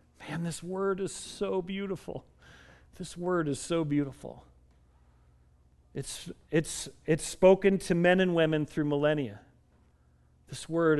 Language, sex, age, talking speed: English, male, 40-59, 125 wpm